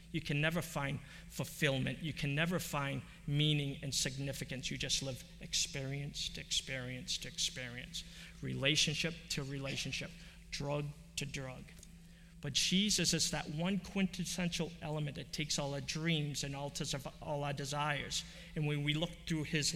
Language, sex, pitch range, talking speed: English, male, 145-170 Hz, 150 wpm